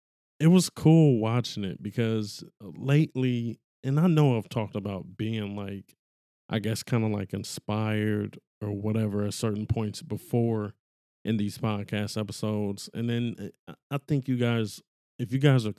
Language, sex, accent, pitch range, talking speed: English, male, American, 105-125 Hz, 155 wpm